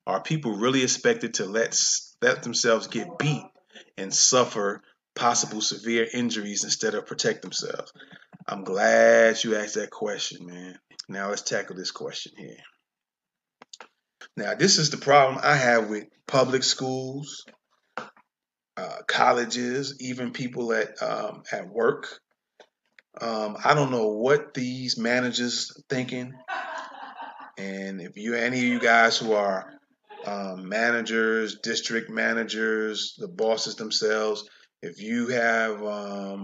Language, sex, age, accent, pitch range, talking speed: English, male, 30-49, American, 110-130 Hz, 130 wpm